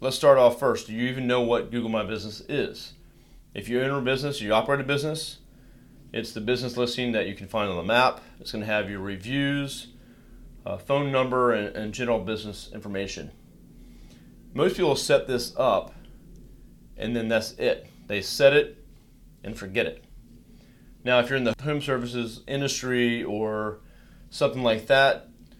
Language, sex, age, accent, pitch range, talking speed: English, male, 30-49, American, 105-125 Hz, 170 wpm